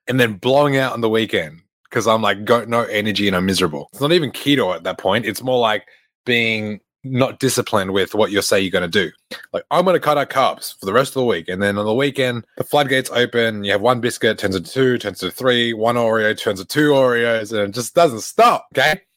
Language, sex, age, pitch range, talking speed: English, male, 20-39, 110-145 Hz, 250 wpm